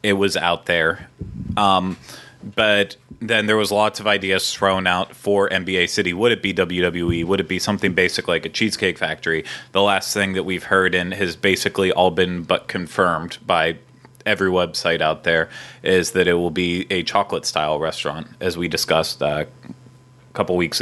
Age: 30-49